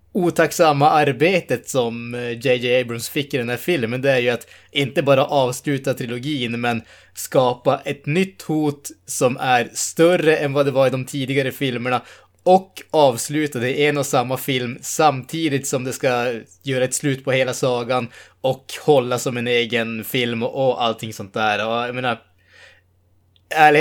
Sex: male